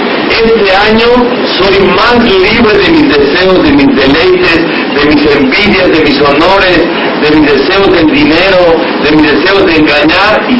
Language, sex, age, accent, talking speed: Spanish, male, 60-79, Mexican, 160 wpm